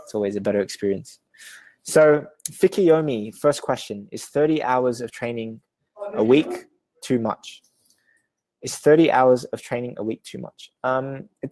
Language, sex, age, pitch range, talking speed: English, male, 20-39, 110-150 Hz, 145 wpm